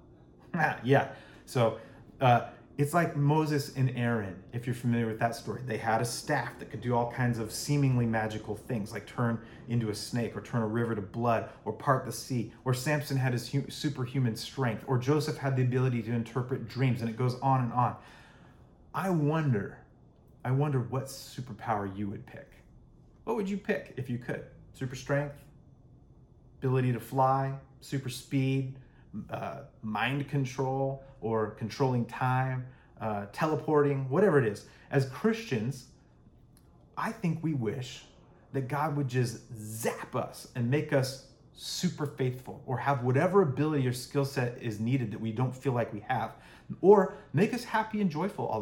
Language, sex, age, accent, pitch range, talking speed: English, male, 30-49, American, 120-150 Hz, 170 wpm